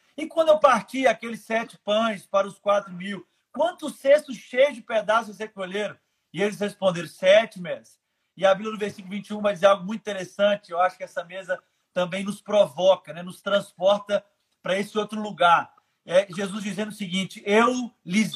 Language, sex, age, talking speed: Portuguese, male, 40-59, 180 wpm